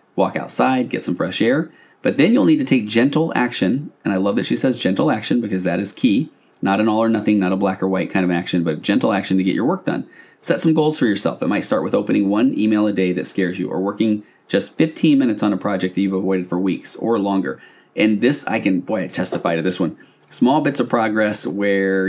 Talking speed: 255 wpm